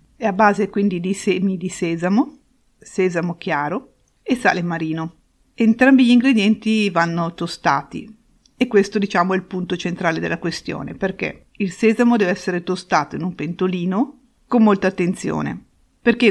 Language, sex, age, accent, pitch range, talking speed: Italian, female, 50-69, native, 170-215 Hz, 145 wpm